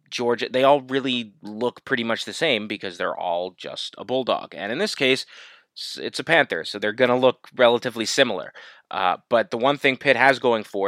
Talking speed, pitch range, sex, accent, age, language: 210 wpm, 105-135 Hz, male, American, 20-39, English